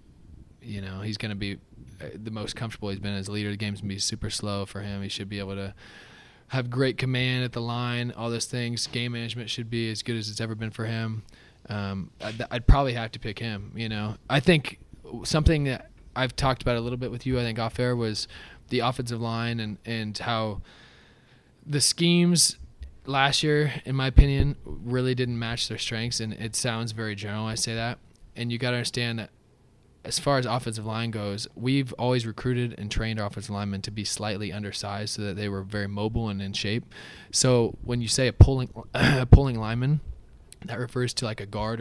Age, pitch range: 20-39, 105-120 Hz